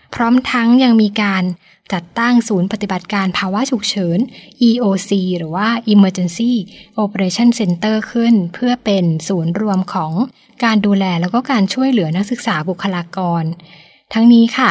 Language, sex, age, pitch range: Thai, female, 20-39, 180-220 Hz